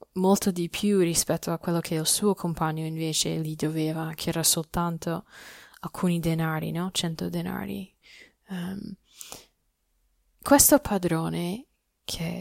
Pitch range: 165-200 Hz